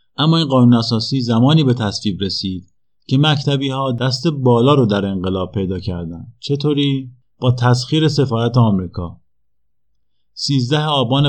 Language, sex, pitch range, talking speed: Persian, male, 105-130 Hz, 135 wpm